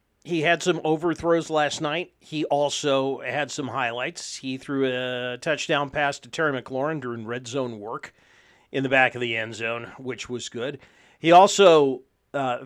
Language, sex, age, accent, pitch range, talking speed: English, male, 50-69, American, 125-155 Hz, 170 wpm